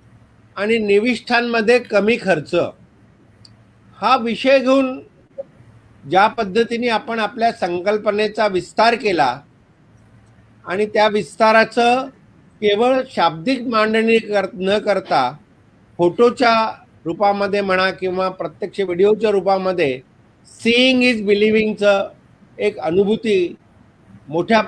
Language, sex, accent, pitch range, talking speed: Marathi, male, native, 175-215 Hz, 90 wpm